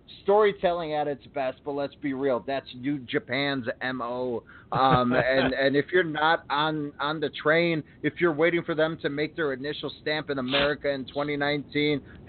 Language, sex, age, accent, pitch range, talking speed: English, male, 30-49, American, 135-165 Hz, 175 wpm